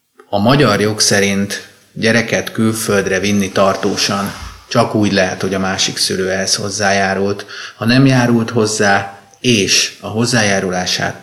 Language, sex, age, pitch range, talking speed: Hungarian, male, 30-49, 95-120 Hz, 130 wpm